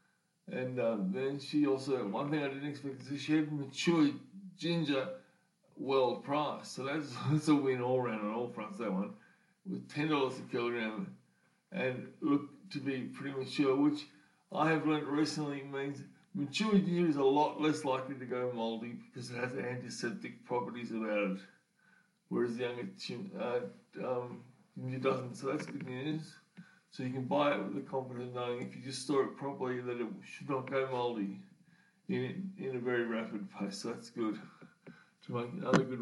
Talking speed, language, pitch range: 180 wpm, English, 125-170 Hz